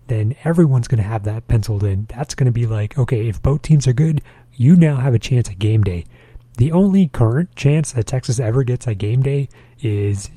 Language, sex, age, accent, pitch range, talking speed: English, male, 30-49, American, 115-140 Hz, 225 wpm